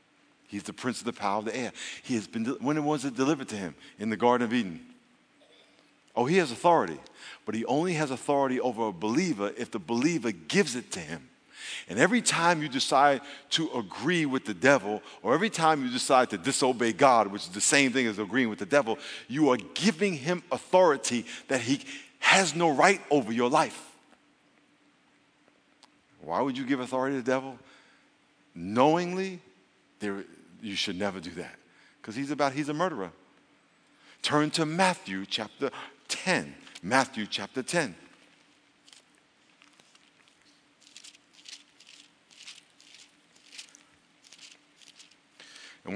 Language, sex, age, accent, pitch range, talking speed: English, male, 50-69, American, 120-165 Hz, 145 wpm